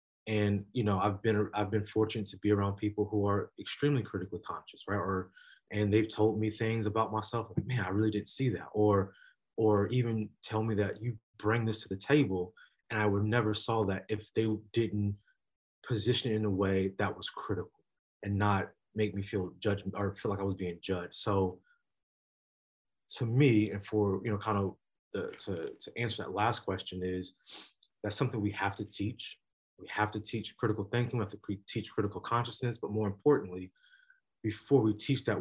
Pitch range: 100-110 Hz